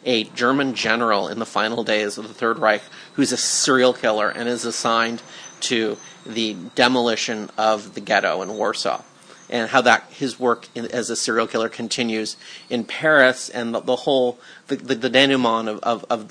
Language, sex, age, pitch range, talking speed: English, male, 30-49, 115-130 Hz, 185 wpm